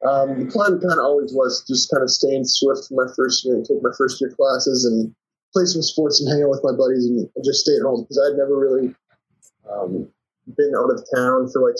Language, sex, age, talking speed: English, male, 20-39, 245 wpm